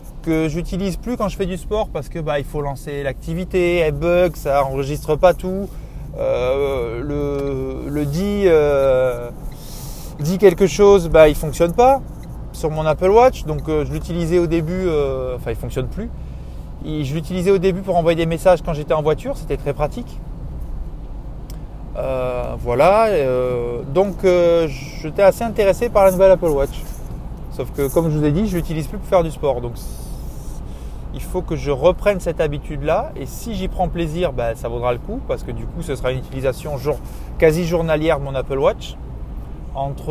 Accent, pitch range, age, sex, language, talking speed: French, 130-175 Hz, 20-39, male, French, 185 wpm